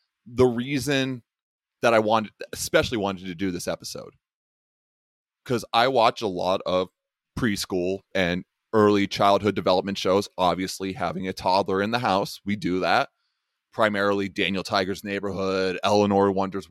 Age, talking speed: 30-49, 140 wpm